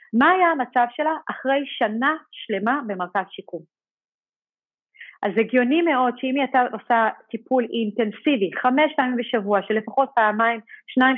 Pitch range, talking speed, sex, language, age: 210-280 Hz, 120 wpm, female, English, 40-59